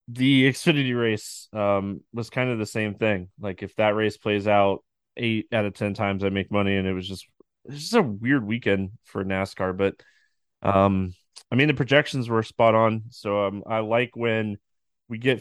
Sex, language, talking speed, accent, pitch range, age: male, English, 200 wpm, American, 100-120 Hz, 20-39